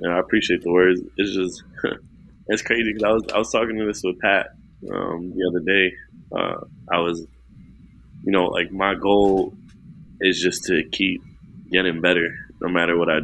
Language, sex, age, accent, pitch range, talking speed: English, male, 20-39, American, 85-95 Hz, 185 wpm